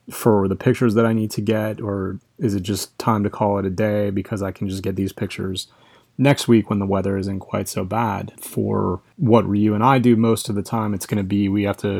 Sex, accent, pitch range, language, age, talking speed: male, American, 100-115 Hz, English, 30-49, 250 wpm